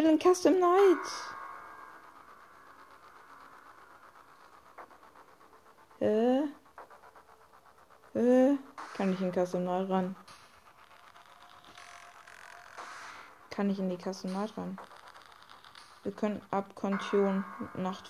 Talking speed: 75 wpm